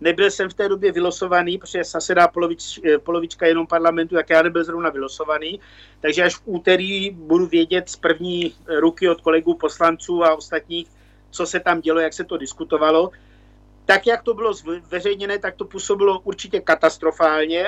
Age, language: 50-69, Czech